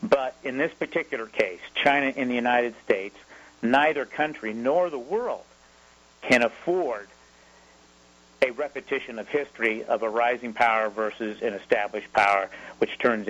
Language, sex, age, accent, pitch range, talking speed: English, male, 50-69, American, 105-140 Hz, 140 wpm